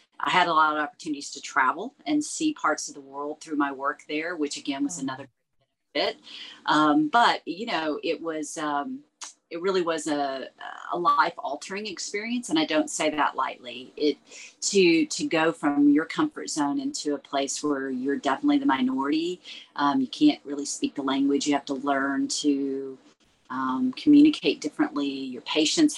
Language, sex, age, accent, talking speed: English, female, 40-59, American, 180 wpm